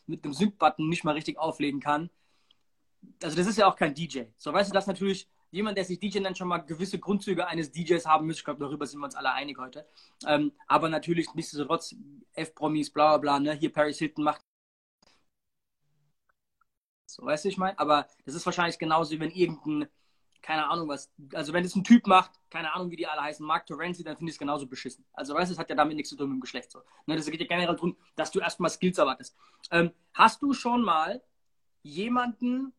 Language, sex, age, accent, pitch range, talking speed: German, male, 20-39, German, 155-215 Hz, 220 wpm